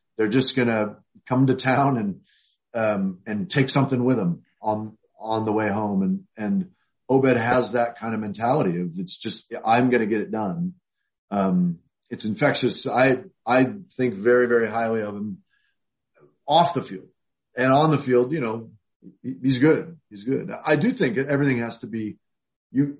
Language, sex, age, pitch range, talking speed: English, male, 40-59, 110-135 Hz, 175 wpm